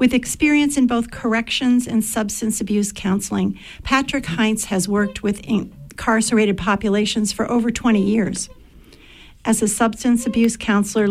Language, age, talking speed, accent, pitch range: English, 50-69, 135 wpm, American, 205-235 Hz